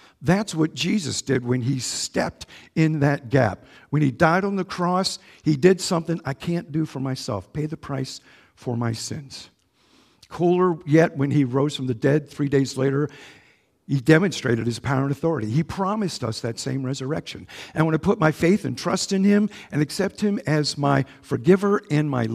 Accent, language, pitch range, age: American, English, 120-155 Hz, 50-69